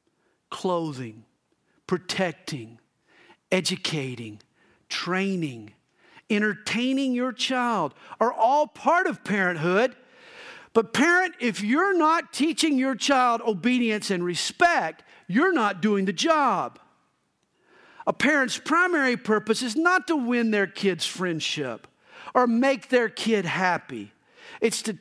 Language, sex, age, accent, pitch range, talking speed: English, male, 50-69, American, 175-270 Hz, 110 wpm